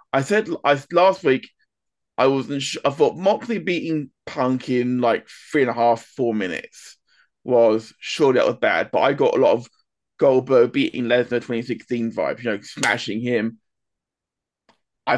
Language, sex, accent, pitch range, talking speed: English, male, British, 120-170 Hz, 165 wpm